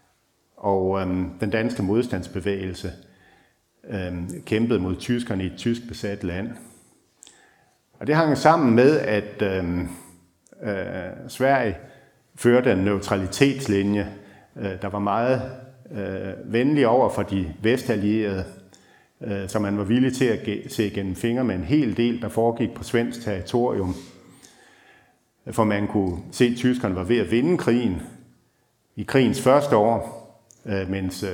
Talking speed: 135 wpm